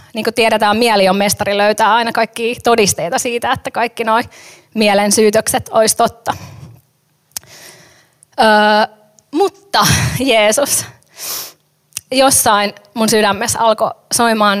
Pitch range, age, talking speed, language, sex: 205-245 Hz, 20-39, 105 wpm, Finnish, female